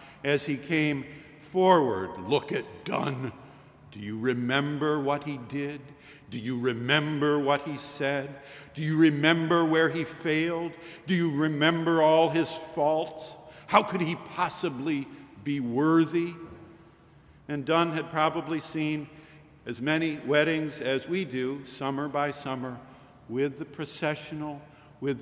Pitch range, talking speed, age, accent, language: 145-180 Hz, 130 wpm, 50-69, American, English